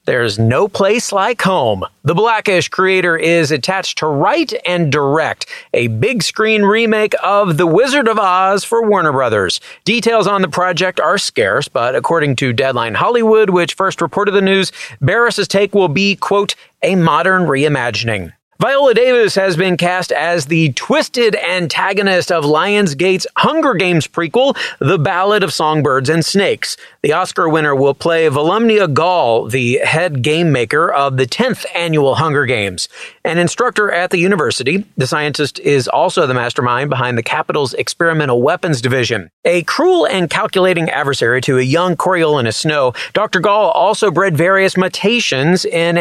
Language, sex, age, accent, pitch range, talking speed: English, male, 30-49, American, 150-205 Hz, 160 wpm